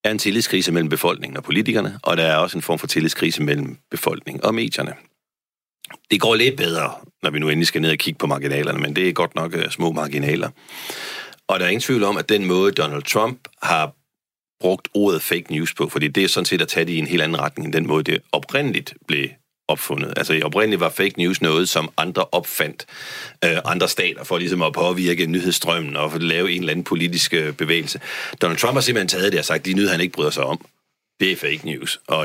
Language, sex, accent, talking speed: Danish, male, native, 230 wpm